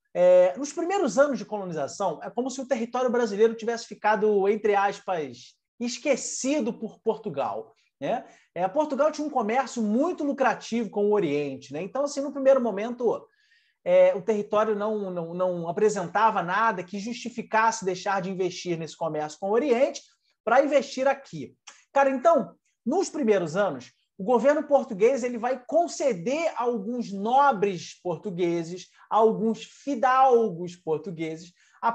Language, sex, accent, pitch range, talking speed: Portuguese, male, Brazilian, 190-270 Hz, 145 wpm